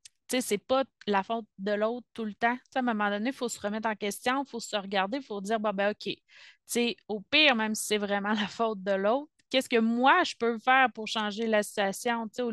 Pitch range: 200-240 Hz